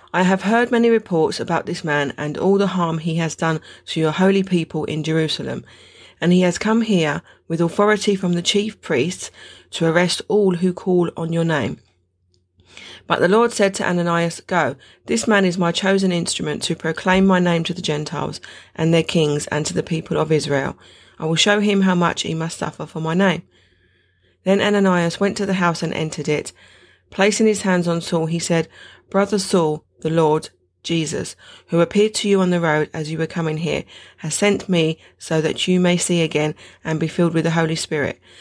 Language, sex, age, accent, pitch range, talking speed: English, female, 30-49, British, 160-190 Hz, 205 wpm